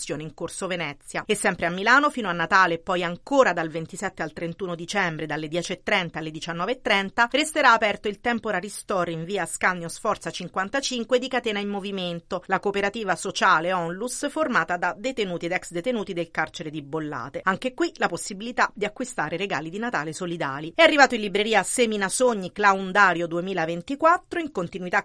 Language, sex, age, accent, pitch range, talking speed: Italian, female, 40-59, native, 170-230 Hz, 170 wpm